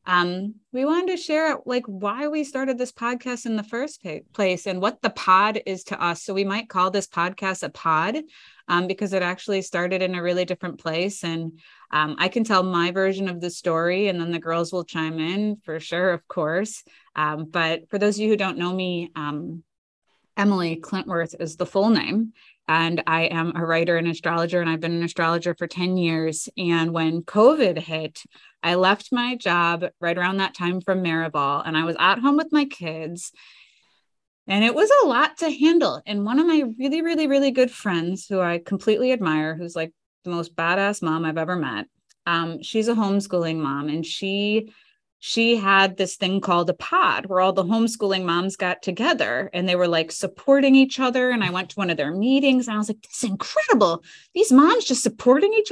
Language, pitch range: English, 170-240 Hz